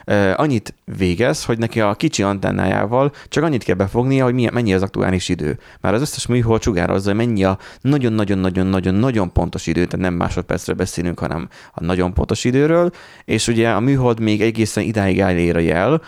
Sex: male